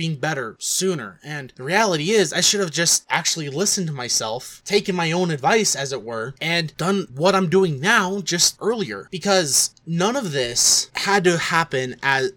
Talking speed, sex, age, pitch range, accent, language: 185 wpm, male, 20-39, 130-175 Hz, American, English